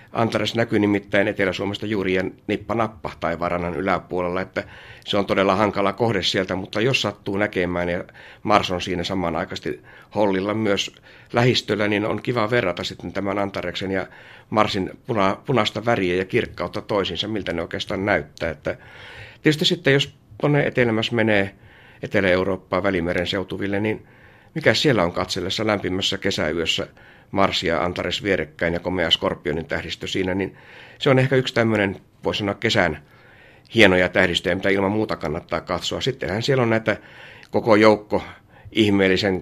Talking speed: 150 wpm